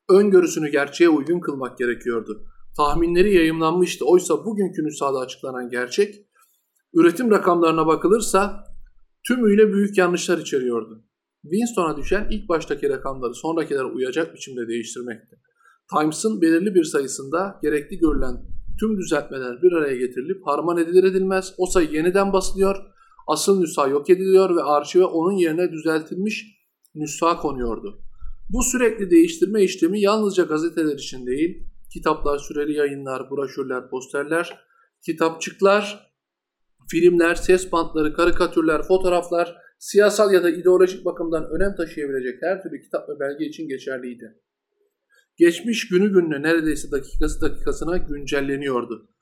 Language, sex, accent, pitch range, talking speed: Turkish, male, native, 145-195 Hz, 115 wpm